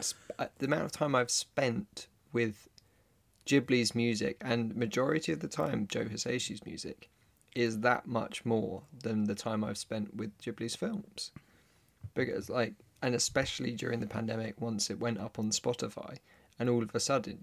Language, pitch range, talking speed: English, 105-120 Hz, 165 wpm